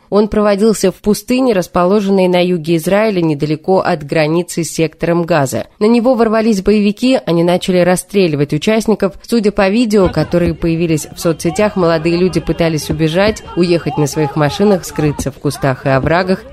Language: Russian